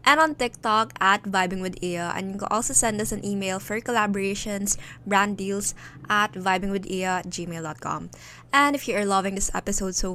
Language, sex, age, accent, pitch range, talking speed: Filipino, female, 20-39, native, 180-215 Hz, 170 wpm